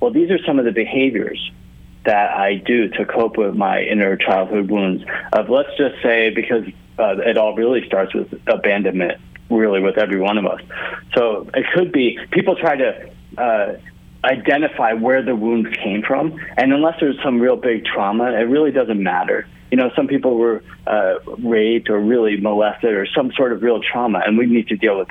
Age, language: 30-49, English